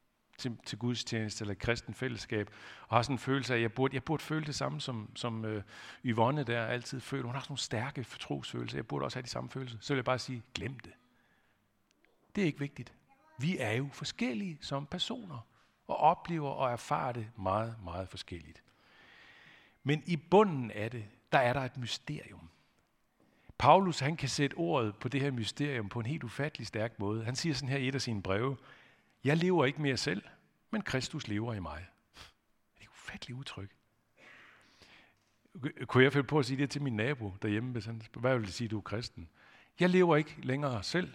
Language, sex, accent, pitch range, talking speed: Danish, male, native, 110-145 Hz, 205 wpm